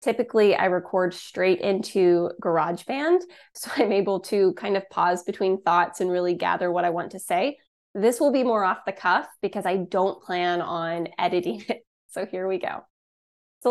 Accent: American